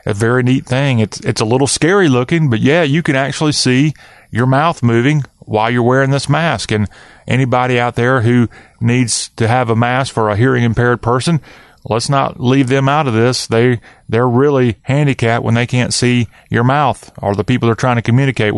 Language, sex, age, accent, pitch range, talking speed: English, male, 30-49, American, 115-140 Hz, 205 wpm